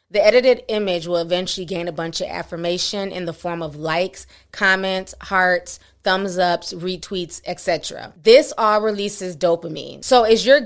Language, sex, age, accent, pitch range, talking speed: English, female, 20-39, American, 170-210 Hz, 160 wpm